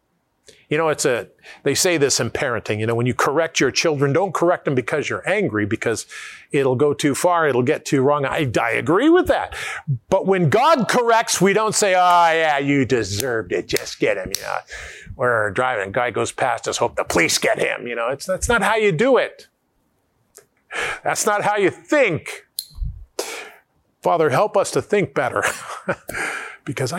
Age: 50-69